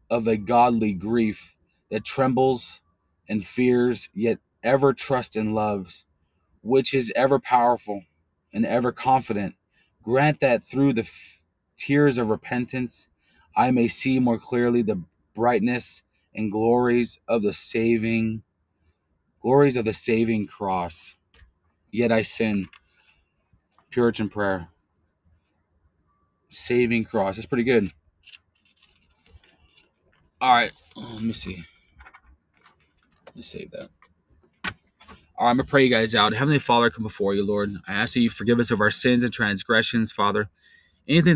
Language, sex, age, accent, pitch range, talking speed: English, male, 30-49, American, 95-120 Hz, 135 wpm